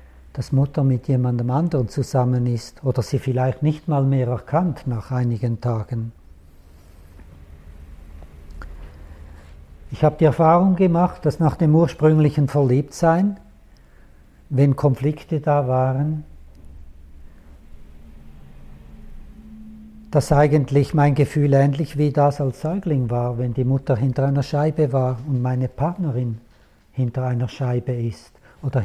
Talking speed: 115 wpm